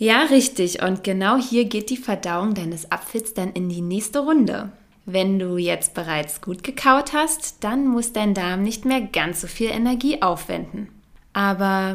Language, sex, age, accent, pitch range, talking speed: German, female, 20-39, German, 185-255 Hz, 170 wpm